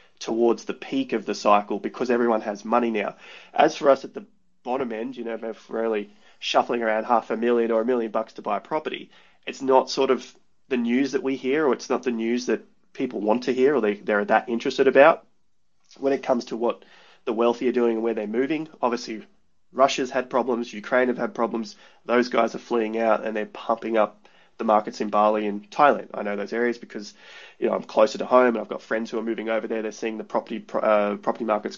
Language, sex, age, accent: English, male, 20-39, Australian